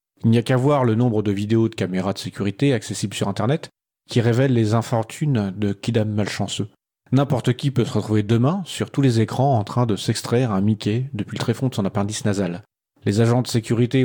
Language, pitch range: French, 105-130 Hz